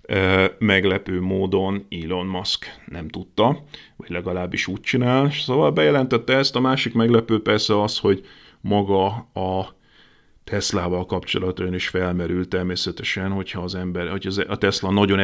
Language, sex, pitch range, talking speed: Hungarian, male, 90-105 Hz, 130 wpm